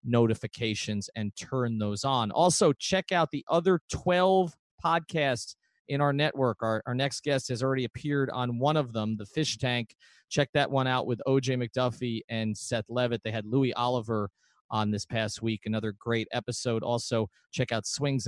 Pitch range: 115-140 Hz